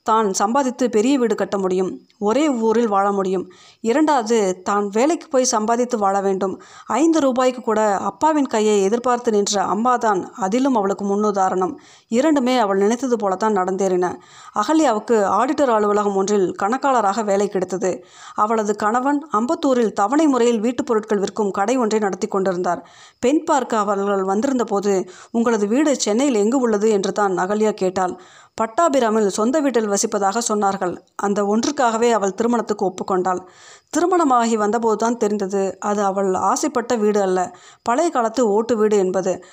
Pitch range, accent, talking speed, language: 200-245 Hz, native, 130 wpm, Tamil